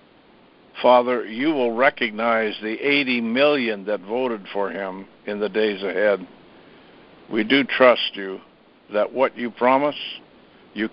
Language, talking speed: English, 130 wpm